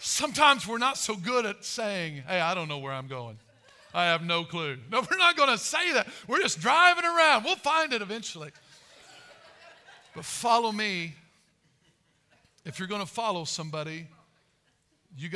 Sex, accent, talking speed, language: male, American, 170 wpm, English